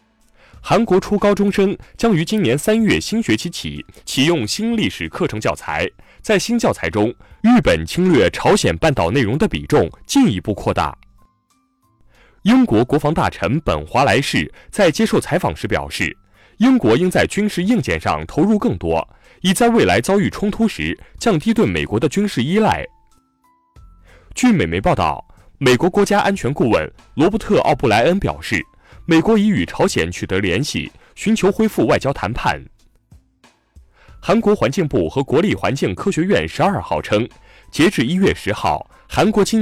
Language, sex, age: Chinese, male, 20-39